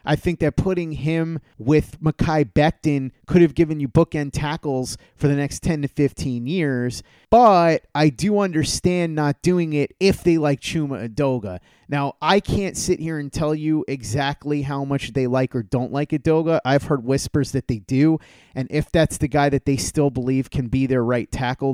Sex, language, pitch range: male, English, 135-165 Hz